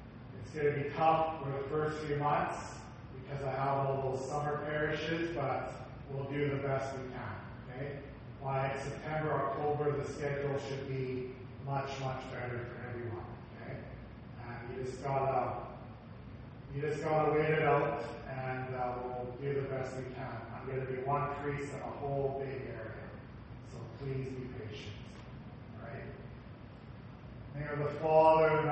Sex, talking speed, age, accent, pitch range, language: male, 160 wpm, 30-49, American, 125-160 Hz, English